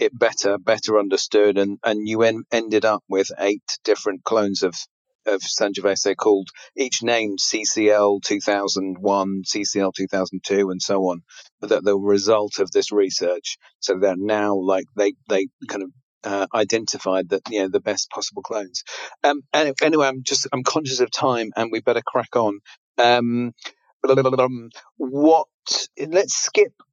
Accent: British